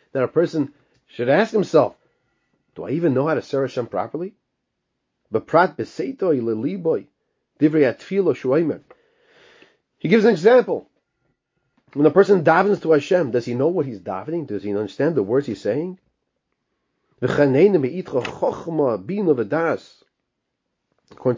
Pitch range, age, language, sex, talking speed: 135-190 Hz, 30-49, English, male, 110 wpm